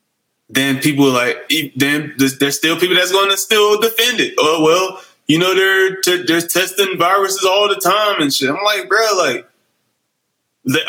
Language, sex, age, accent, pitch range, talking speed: English, male, 20-39, American, 160-200 Hz, 180 wpm